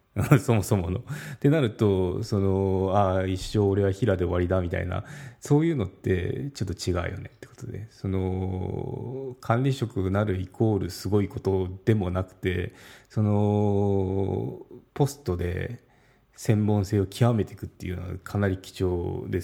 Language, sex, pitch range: Japanese, male, 95-120 Hz